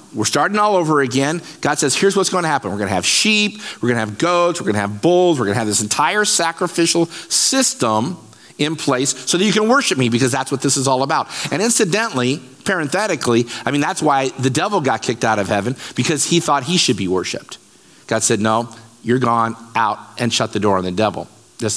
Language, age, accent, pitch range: English, 50-69, American, 120-180 Hz